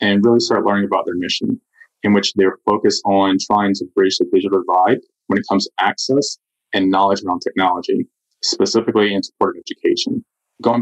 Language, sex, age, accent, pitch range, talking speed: English, male, 20-39, American, 100-110 Hz, 185 wpm